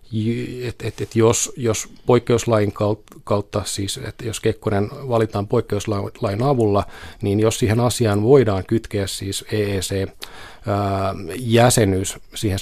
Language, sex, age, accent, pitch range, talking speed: Finnish, male, 30-49, native, 100-115 Hz, 115 wpm